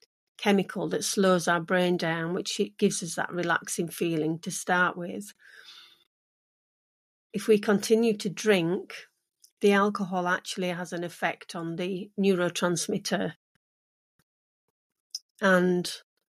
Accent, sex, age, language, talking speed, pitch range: British, female, 40-59, English, 115 wpm, 175-200 Hz